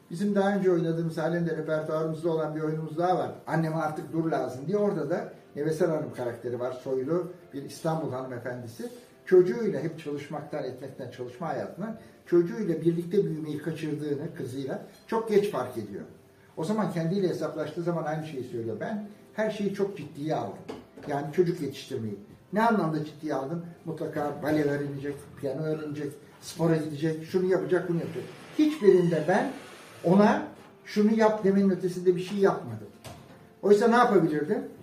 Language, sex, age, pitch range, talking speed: Turkish, male, 60-79, 145-190 Hz, 150 wpm